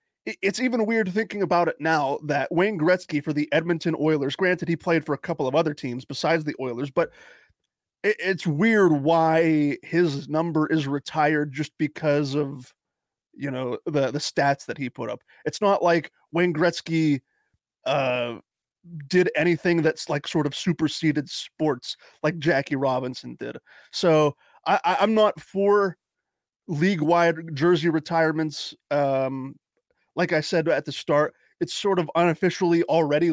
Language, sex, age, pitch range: English, male, 30-49, 145-170 Hz